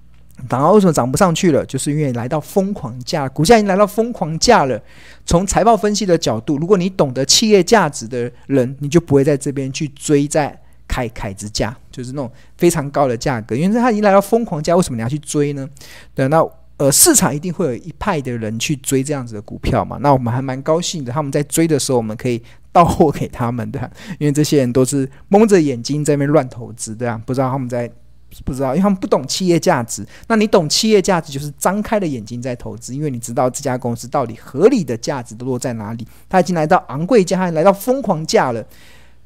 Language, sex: Chinese, male